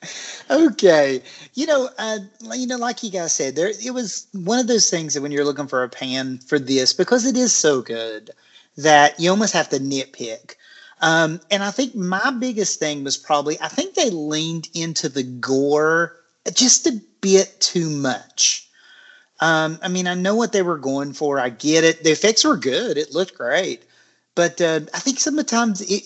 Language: English